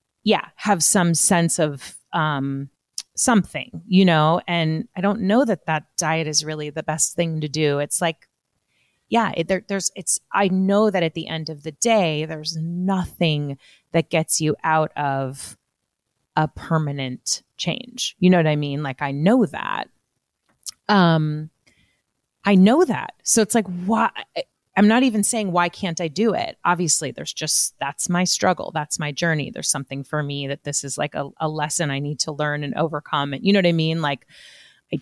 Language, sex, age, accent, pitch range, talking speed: English, female, 30-49, American, 150-185 Hz, 185 wpm